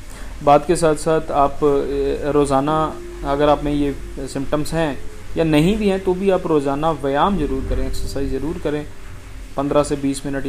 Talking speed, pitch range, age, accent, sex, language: 170 wpm, 130-160 Hz, 30-49, native, male, Hindi